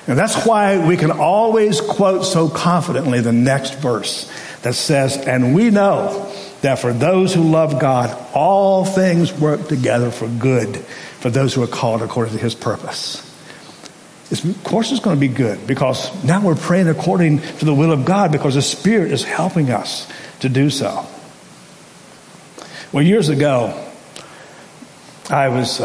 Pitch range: 135-175 Hz